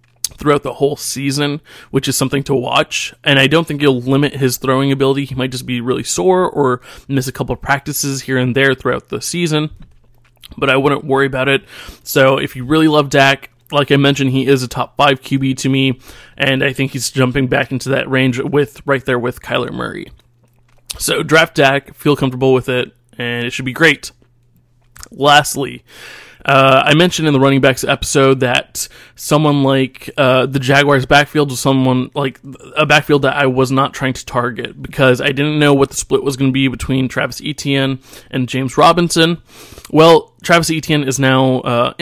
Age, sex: 20-39, male